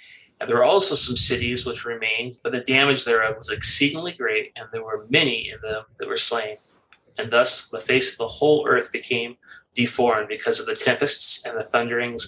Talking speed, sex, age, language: 200 wpm, male, 30-49, English